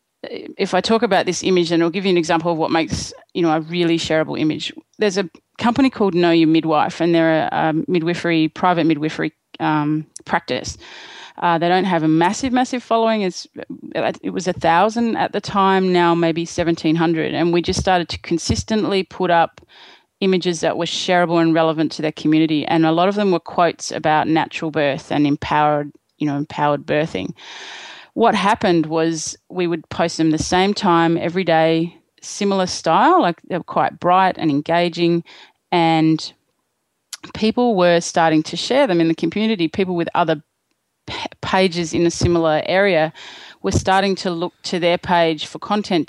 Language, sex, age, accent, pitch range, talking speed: English, female, 30-49, Australian, 160-185 Hz, 180 wpm